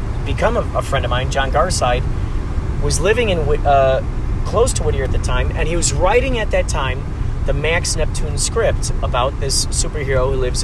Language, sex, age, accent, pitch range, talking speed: English, male, 30-49, American, 90-120 Hz, 190 wpm